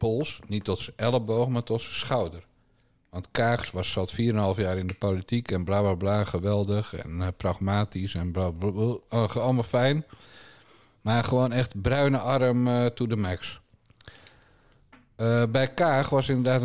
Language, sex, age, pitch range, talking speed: Dutch, male, 50-69, 100-120 Hz, 170 wpm